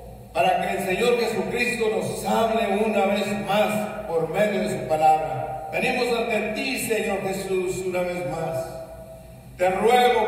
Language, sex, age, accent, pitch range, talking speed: Spanish, male, 50-69, Mexican, 195-255 Hz, 145 wpm